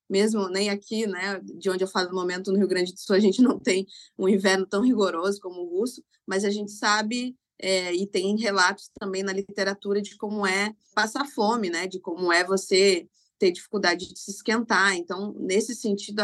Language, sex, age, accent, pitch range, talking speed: Portuguese, female, 20-39, Brazilian, 190-235 Hz, 200 wpm